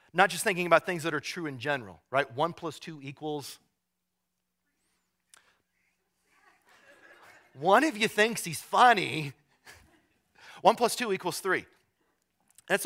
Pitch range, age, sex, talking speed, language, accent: 135-180 Hz, 40-59, male, 125 wpm, English, American